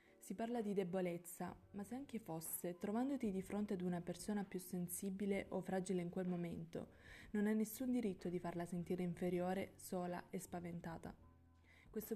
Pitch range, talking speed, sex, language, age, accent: 175-200 Hz, 165 wpm, female, Italian, 20-39, native